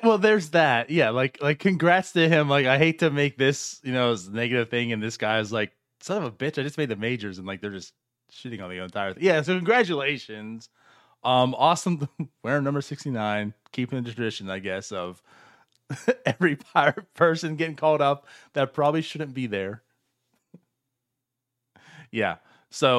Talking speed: 180 wpm